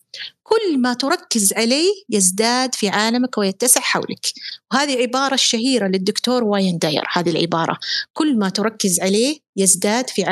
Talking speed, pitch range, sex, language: 135 wpm, 220-310 Hz, female, Arabic